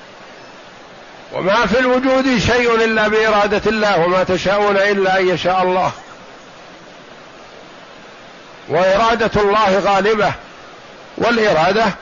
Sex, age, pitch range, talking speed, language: male, 50-69, 175-215 Hz, 85 wpm, Arabic